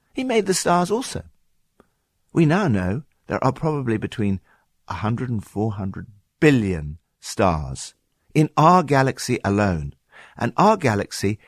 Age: 60-79